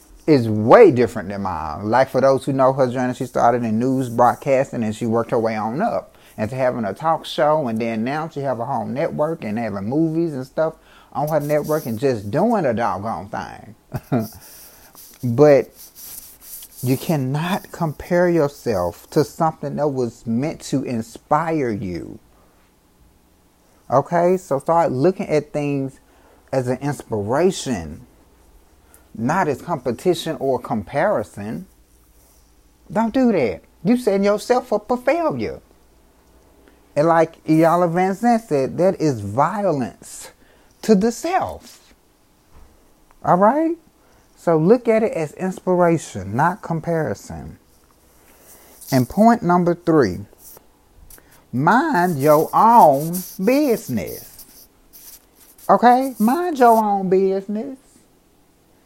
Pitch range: 125-185 Hz